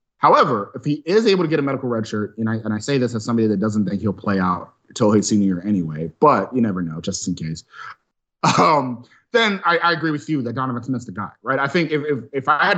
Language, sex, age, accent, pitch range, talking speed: English, male, 30-49, American, 115-155 Hz, 265 wpm